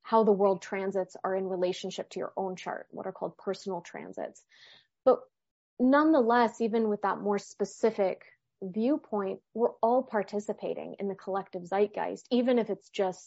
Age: 20-39